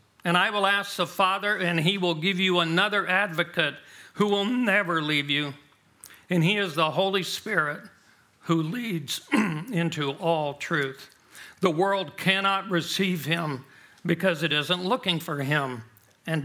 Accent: American